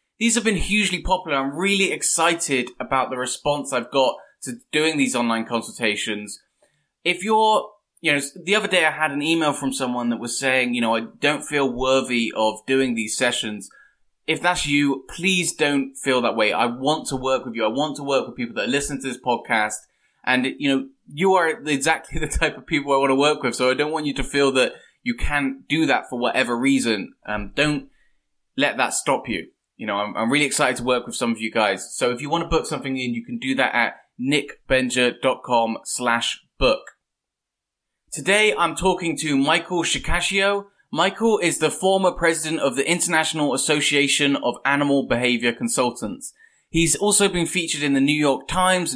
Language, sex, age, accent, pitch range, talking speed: English, male, 20-39, British, 130-175 Hz, 195 wpm